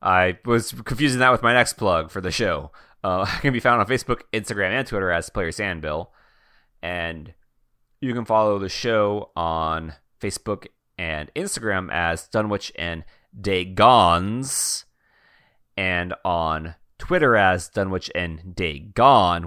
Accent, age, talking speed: American, 30-49, 140 wpm